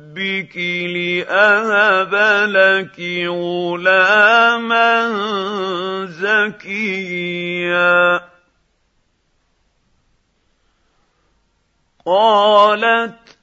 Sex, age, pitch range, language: male, 50-69, 190-230 Hz, Arabic